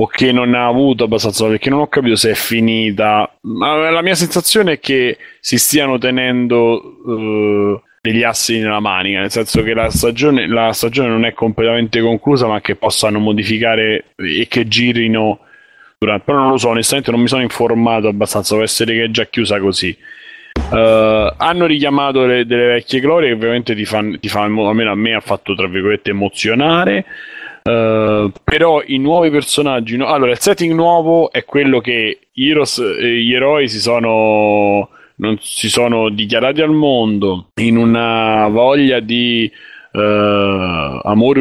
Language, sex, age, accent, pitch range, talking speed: Italian, male, 30-49, native, 105-125 Hz, 160 wpm